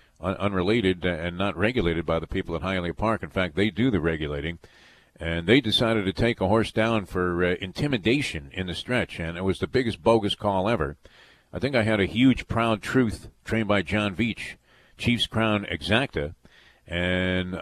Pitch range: 90-110 Hz